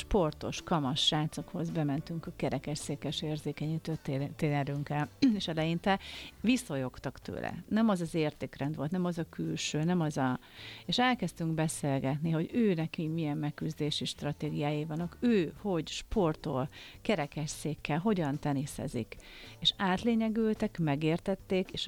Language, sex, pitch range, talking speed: Hungarian, female, 145-185 Hz, 120 wpm